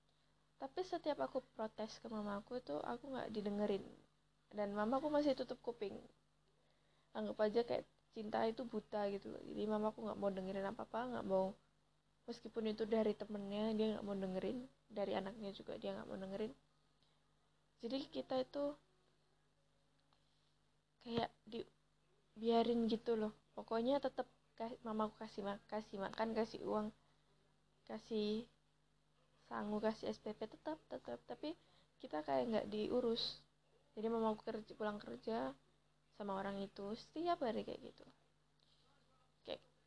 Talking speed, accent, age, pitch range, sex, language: 130 wpm, native, 20-39, 210-240 Hz, female, Indonesian